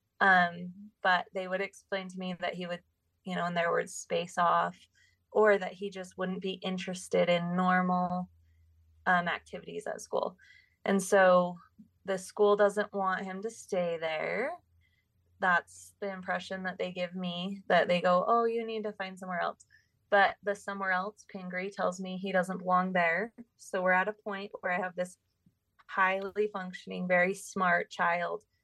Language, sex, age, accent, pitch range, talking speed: English, female, 20-39, American, 180-205 Hz, 170 wpm